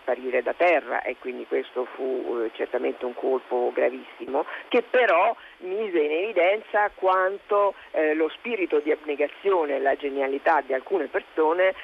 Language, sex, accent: Italian, female, native